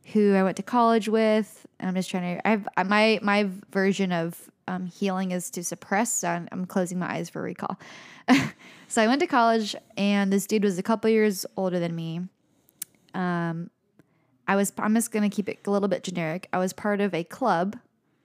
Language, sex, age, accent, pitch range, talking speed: English, female, 10-29, American, 185-220 Hz, 205 wpm